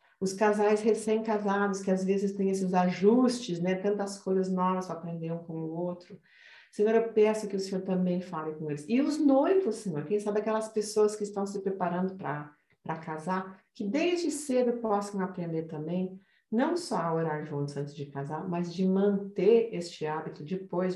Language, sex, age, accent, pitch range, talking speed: Portuguese, female, 50-69, Brazilian, 170-210 Hz, 185 wpm